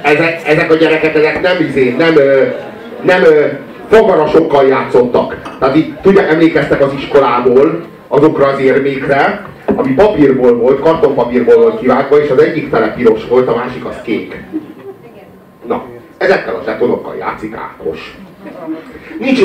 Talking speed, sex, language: 135 wpm, male, Hungarian